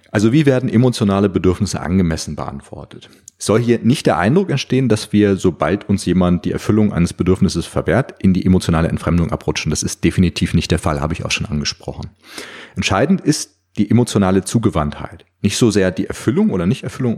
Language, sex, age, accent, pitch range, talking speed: German, male, 30-49, German, 90-120 Hz, 180 wpm